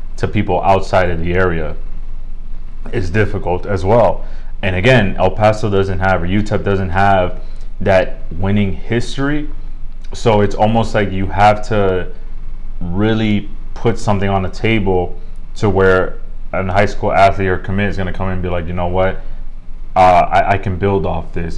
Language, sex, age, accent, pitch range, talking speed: English, male, 20-39, American, 95-110 Hz, 170 wpm